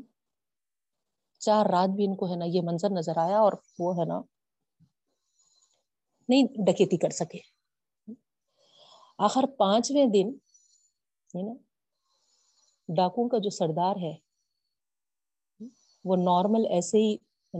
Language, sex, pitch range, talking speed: Urdu, female, 175-225 Hz, 115 wpm